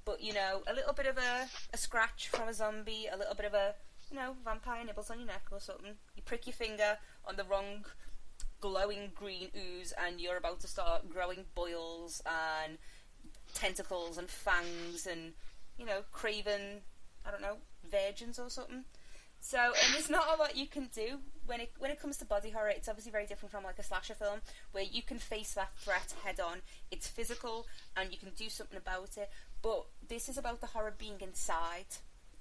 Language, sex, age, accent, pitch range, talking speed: English, female, 20-39, British, 190-240 Hz, 200 wpm